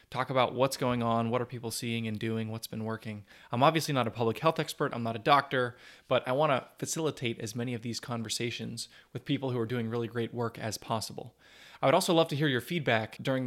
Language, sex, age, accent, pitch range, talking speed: English, male, 20-39, American, 115-130 Hz, 240 wpm